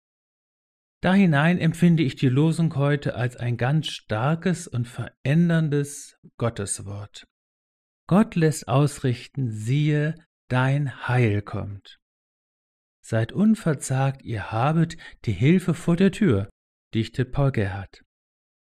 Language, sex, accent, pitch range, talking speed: German, male, German, 115-160 Hz, 105 wpm